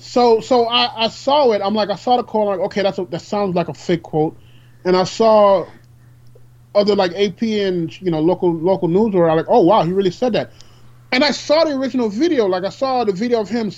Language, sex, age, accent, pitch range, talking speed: English, male, 30-49, American, 155-225 Hz, 245 wpm